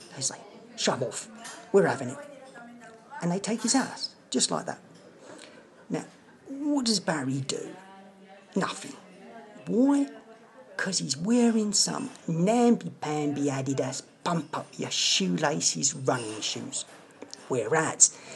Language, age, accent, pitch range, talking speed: English, 40-59, British, 135-220 Hz, 110 wpm